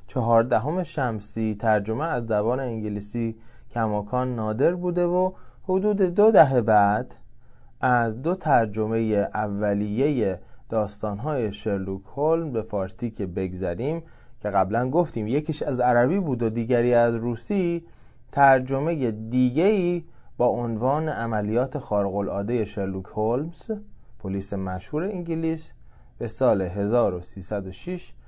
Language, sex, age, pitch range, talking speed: Persian, male, 20-39, 110-160 Hz, 110 wpm